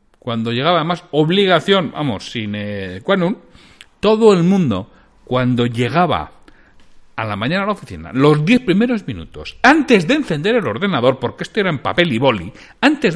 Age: 60-79